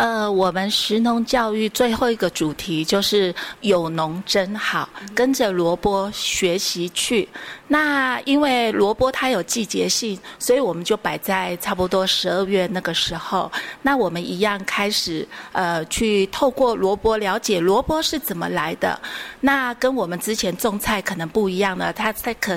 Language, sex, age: Chinese, female, 30-49